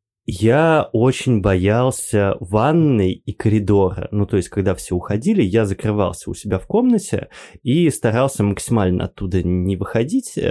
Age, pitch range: 20-39, 100-130 Hz